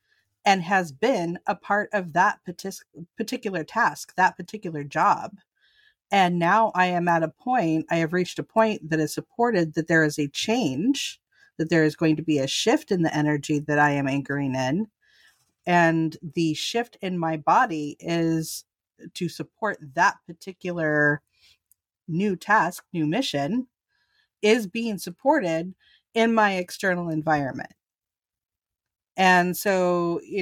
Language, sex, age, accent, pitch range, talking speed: English, female, 40-59, American, 155-200 Hz, 145 wpm